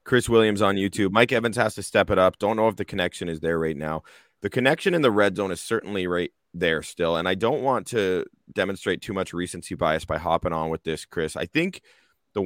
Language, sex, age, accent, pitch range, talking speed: English, male, 30-49, American, 85-110 Hz, 240 wpm